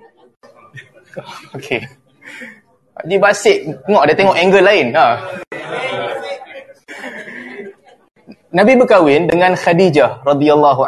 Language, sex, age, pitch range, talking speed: Malay, male, 20-39, 150-215 Hz, 75 wpm